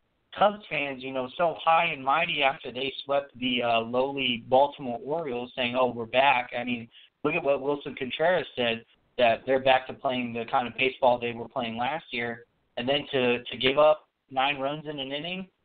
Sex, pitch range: male, 125-150 Hz